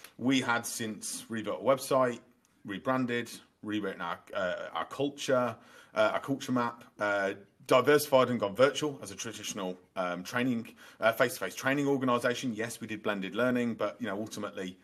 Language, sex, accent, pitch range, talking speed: English, male, British, 110-140 Hz, 160 wpm